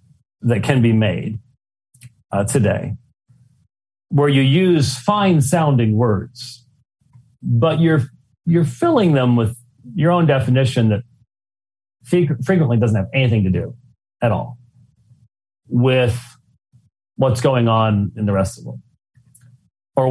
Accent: American